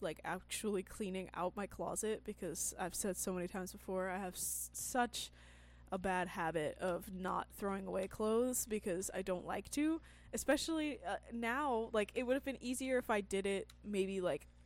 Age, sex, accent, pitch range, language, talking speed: 20-39, female, American, 175-205 Hz, English, 180 wpm